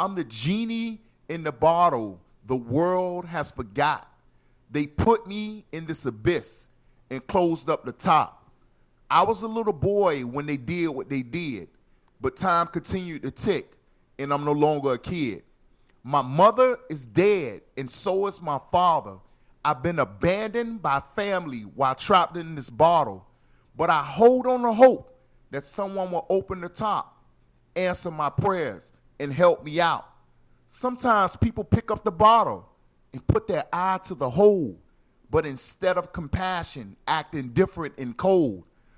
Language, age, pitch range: English, 40-59, 140-200 Hz